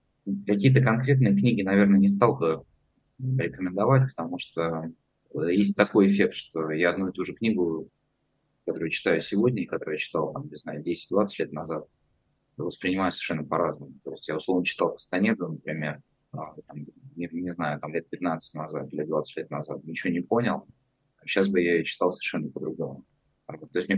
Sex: male